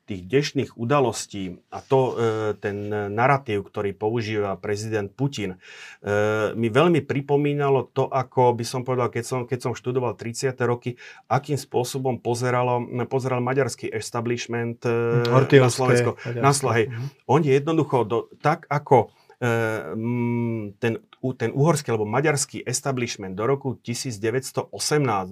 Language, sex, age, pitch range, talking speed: Slovak, male, 30-49, 115-135 Hz, 125 wpm